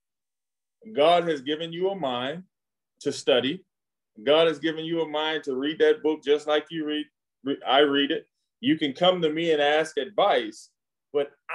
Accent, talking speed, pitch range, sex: American, 175 wpm, 140-195 Hz, male